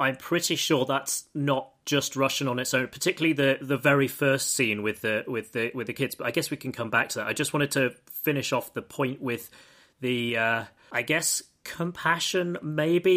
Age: 30-49